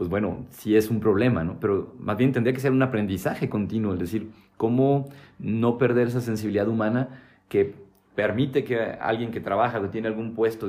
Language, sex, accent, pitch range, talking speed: Spanish, male, Mexican, 95-130 Hz, 190 wpm